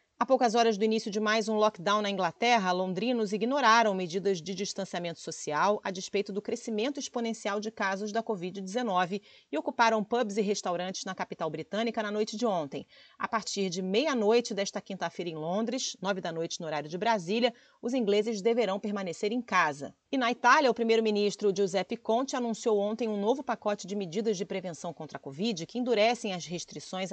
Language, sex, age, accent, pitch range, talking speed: Portuguese, female, 40-59, Brazilian, 185-230 Hz, 180 wpm